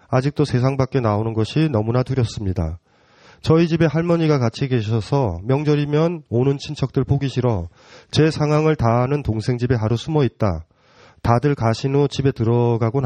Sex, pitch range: male, 125-180 Hz